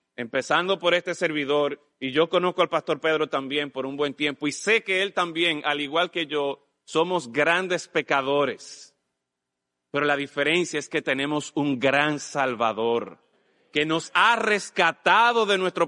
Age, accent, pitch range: 30-49, Mexican, 145-190 Hz